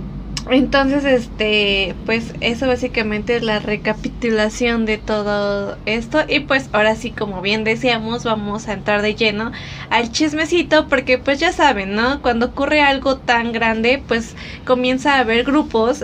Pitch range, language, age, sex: 215-255 Hz, Spanish, 20-39, female